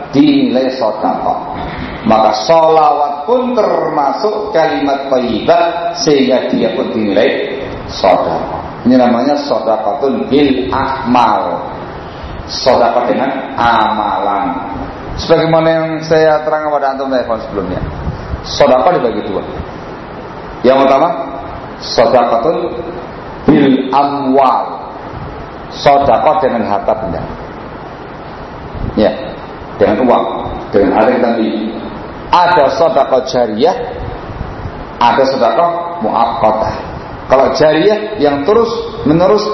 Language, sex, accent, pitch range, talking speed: Indonesian, male, native, 125-170 Hz, 85 wpm